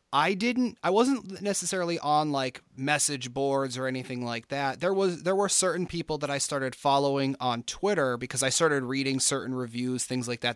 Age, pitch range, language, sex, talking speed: 30-49, 125-150 Hz, English, male, 195 wpm